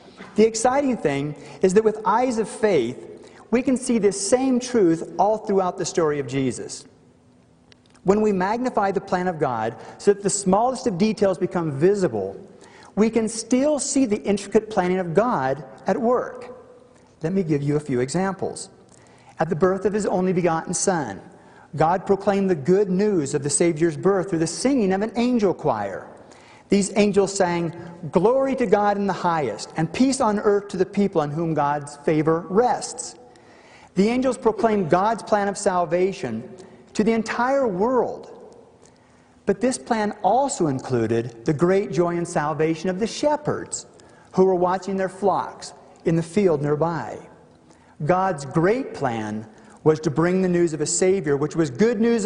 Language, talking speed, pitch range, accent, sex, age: English, 170 wpm, 165-215 Hz, American, male, 50-69